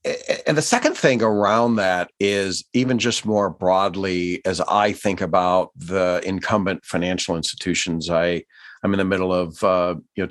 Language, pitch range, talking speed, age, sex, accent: English, 85-100 Hz, 145 wpm, 50-69, male, American